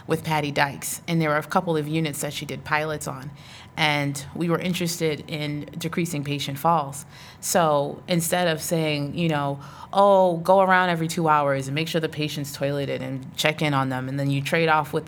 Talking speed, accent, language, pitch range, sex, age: 205 wpm, American, English, 145-170 Hz, female, 30-49